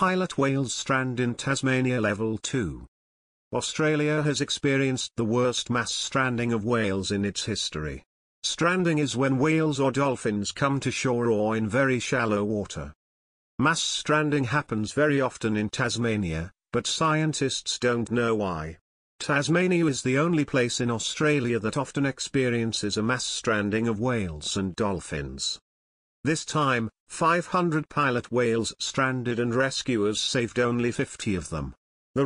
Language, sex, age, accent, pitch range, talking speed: Greek, male, 50-69, British, 105-140 Hz, 140 wpm